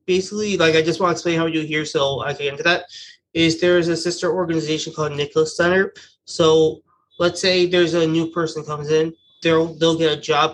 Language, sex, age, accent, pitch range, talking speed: English, male, 20-39, American, 150-170 Hz, 230 wpm